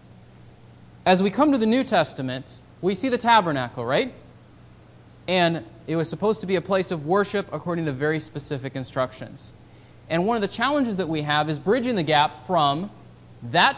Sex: male